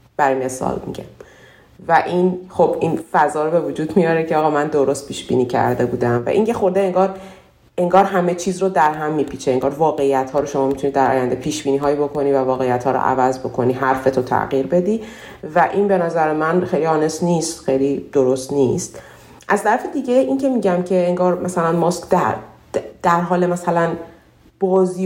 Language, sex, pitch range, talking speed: Persian, female, 140-180 Hz, 190 wpm